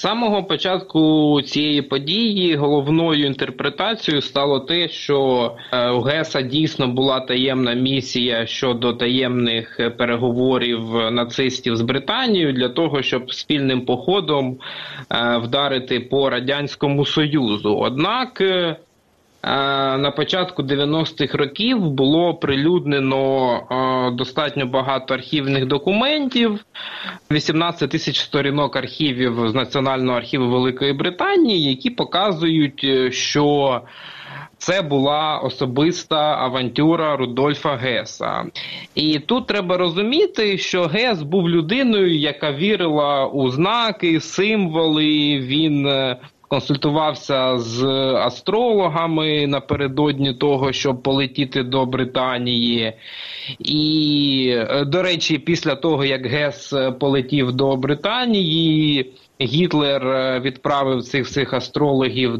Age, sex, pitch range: 20-39, male, 130-160 Hz